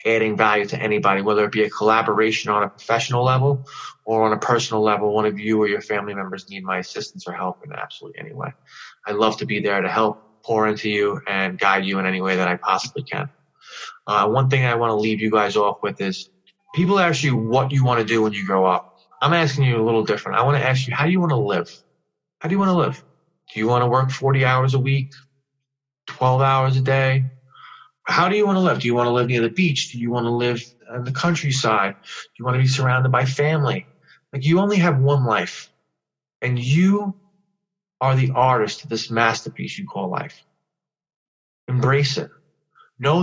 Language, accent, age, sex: English, American, 20-39, male